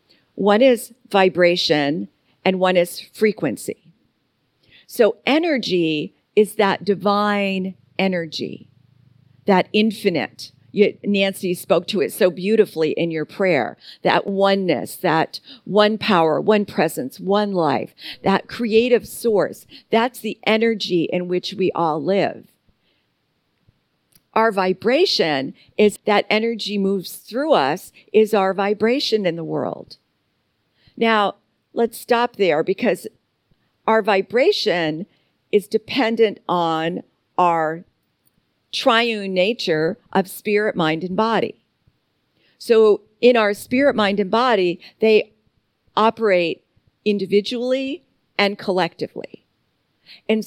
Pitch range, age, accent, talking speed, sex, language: 175-220 Hz, 50-69, American, 105 wpm, female, English